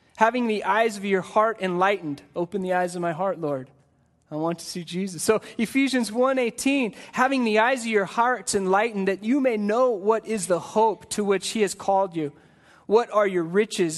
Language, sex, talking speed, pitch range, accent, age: English, male, 200 wpm, 180-230 Hz, American, 20-39